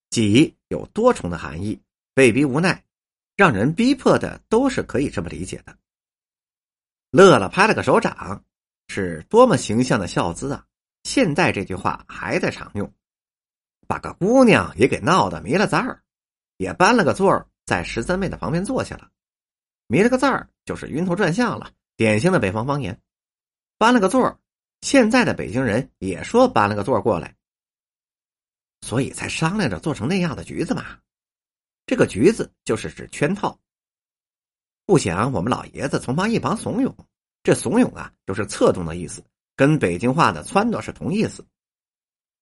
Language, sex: Chinese, male